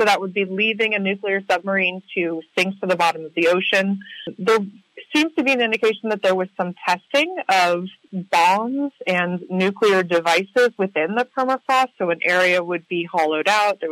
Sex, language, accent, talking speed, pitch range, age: female, English, American, 185 wpm, 180-225 Hz, 30-49